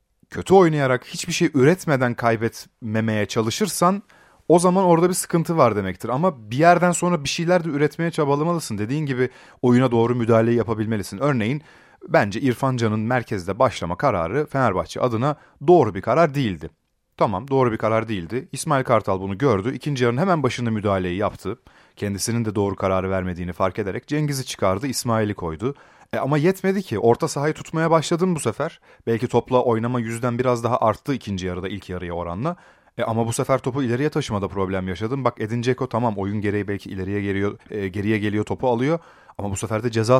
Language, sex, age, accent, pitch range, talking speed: Turkish, male, 30-49, native, 100-140 Hz, 175 wpm